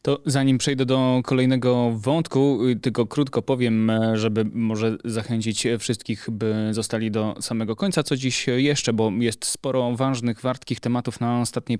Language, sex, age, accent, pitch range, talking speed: Polish, male, 20-39, native, 110-130 Hz, 145 wpm